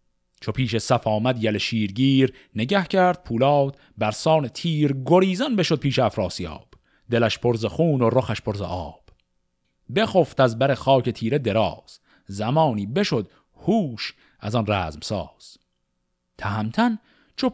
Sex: male